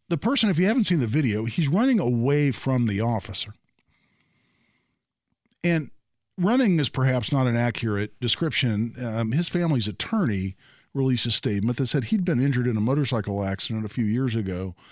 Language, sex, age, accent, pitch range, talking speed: English, male, 50-69, American, 120-180 Hz, 170 wpm